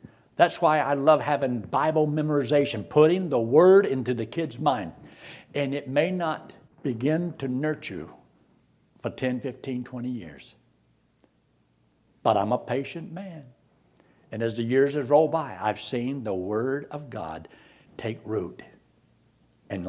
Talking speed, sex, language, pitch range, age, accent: 140 wpm, male, English, 125-180 Hz, 60-79, American